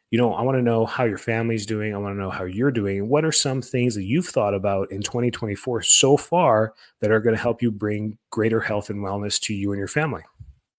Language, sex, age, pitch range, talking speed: English, male, 30-49, 105-130 Hz, 250 wpm